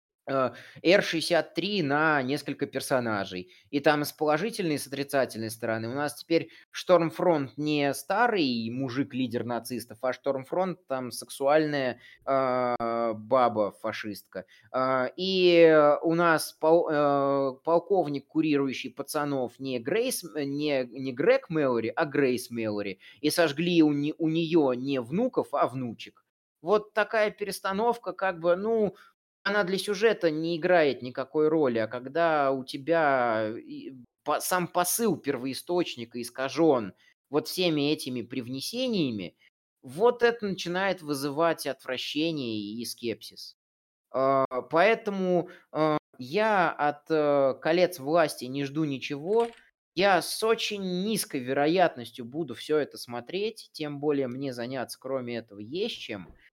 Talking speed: 120 wpm